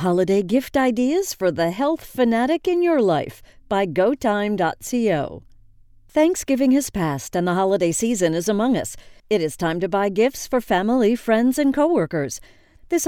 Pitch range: 170-255 Hz